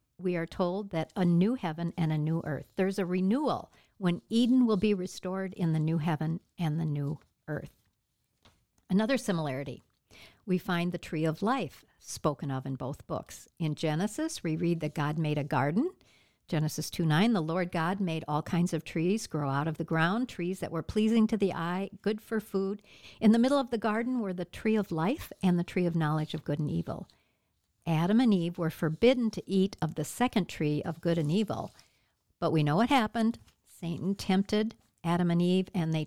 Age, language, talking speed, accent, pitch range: 60-79, English, 200 wpm, American, 155-195 Hz